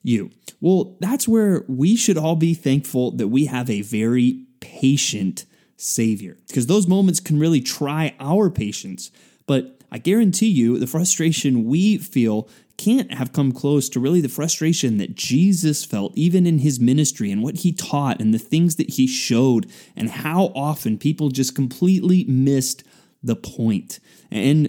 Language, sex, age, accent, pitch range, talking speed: English, male, 20-39, American, 125-185 Hz, 165 wpm